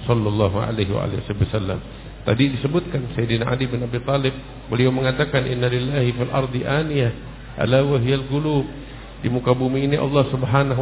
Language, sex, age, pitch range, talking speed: Indonesian, male, 50-69, 125-150 Hz, 150 wpm